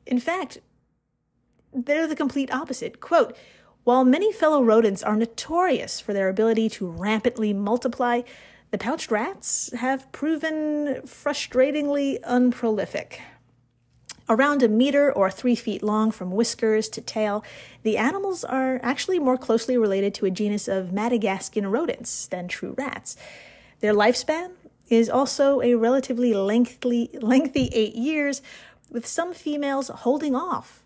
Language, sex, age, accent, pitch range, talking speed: English, female, 30-49, American, 215-270 Hz, 130 wpm